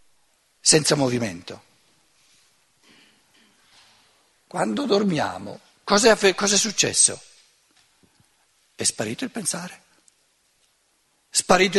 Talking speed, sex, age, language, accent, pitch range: 65 wpm, male, 60-79, Italian, native, 155-230 Hz